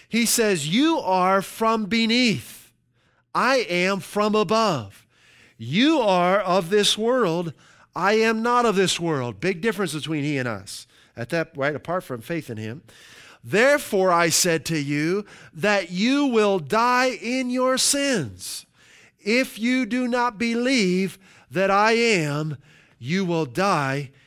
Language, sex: English, male